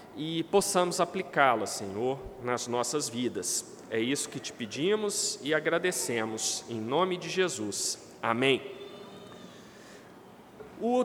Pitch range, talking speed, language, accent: 165-235 Hz, 110 wpm, Portuguese, Brazilian